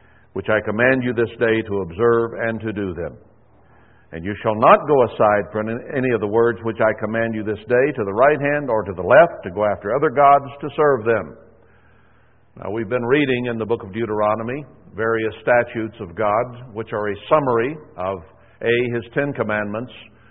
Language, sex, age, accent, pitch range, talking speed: English, male, 60-79, American, 110-130 Hz, 200 wpm